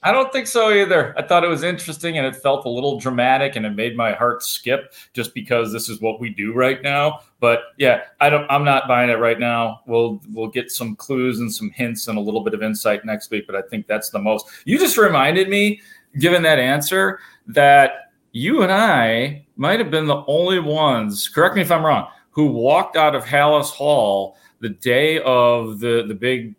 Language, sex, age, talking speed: English, male, 30-49, 215 wpm